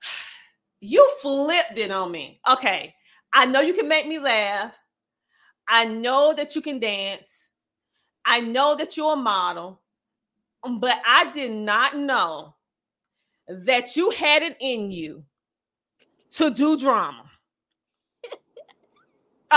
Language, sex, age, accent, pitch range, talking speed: English, female, 30-49, American, 205-295 Hz, 120 wpm